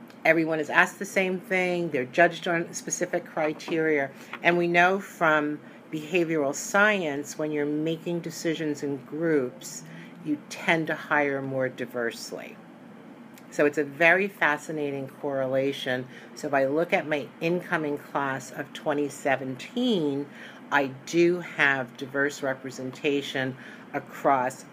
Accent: American